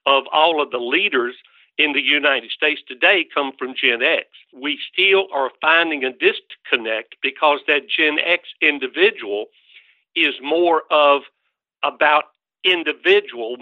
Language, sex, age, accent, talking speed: English, male, 60-79, American, 130 wpm